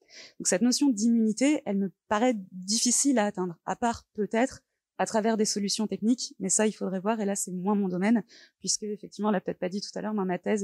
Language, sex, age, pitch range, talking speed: French, female, 20-39, 200-245 Hz, 235 wpm